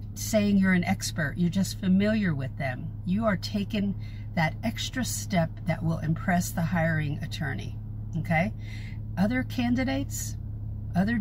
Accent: American